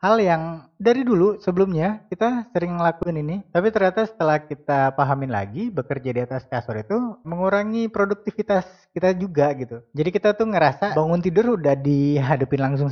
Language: Indonesian